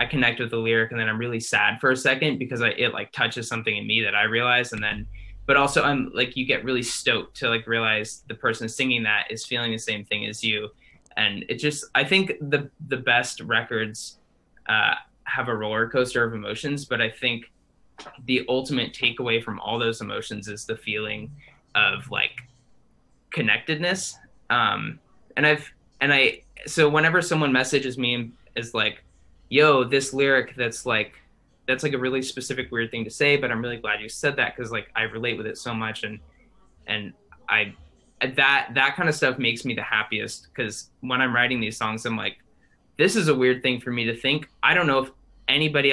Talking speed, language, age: 205 wpm, English, 20-39